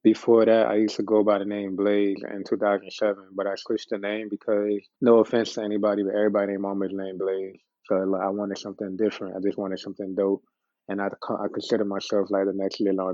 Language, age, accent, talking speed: English, 20-39, American, 235 wpm